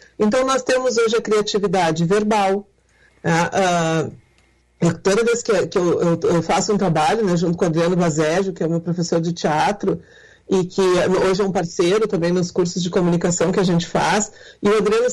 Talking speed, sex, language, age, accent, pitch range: 185 wpm, female, Portuguese, 40-59, Brazilian, 190-235 Hz